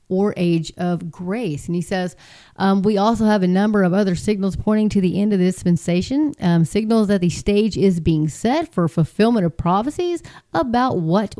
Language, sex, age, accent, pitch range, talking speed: English, female, 30-49, American, 170-210 Hz, 195 wpm